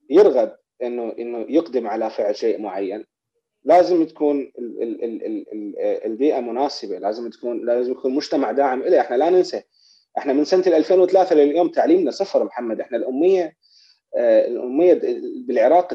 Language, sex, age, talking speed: Arabic, male, 30-49, 130 wpm